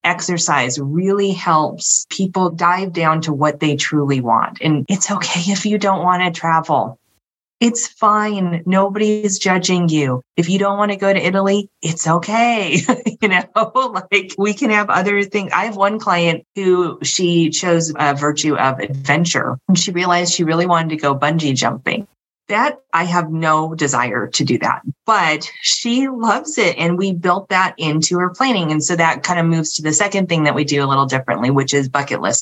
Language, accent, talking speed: English, American, 190 wpm